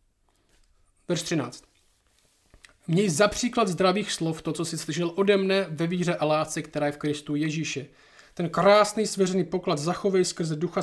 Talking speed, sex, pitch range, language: 155 wpm, male, 170-205 Hz, Czech